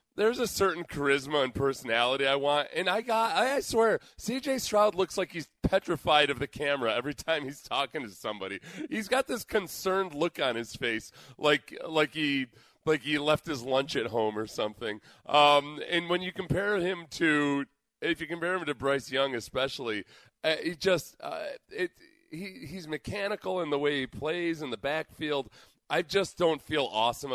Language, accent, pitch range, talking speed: English, American, 115-165 Hz, 185 wpm